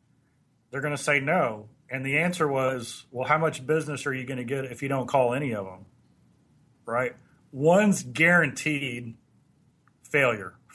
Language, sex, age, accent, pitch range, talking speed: English, male, 40-59, American, 130-165 Hz, 160 wpm